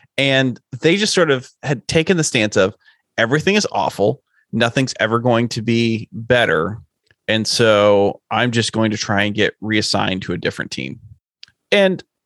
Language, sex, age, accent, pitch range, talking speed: English, male, 30-49, American, 105-130 Hz, 165 wpm